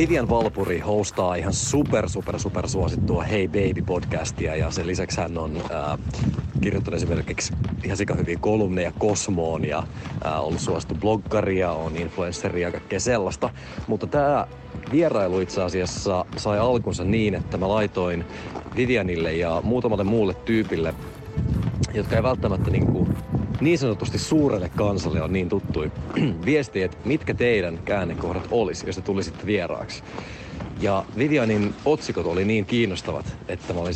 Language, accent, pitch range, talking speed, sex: Finnish, native, 90-115 Hz, 140 wpm, male